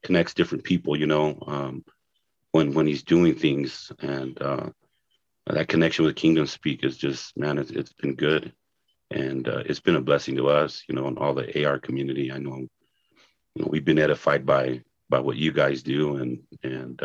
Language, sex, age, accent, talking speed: English, male, 40-59, American, 195 wpm